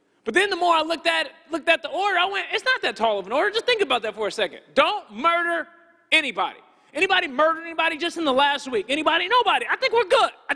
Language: English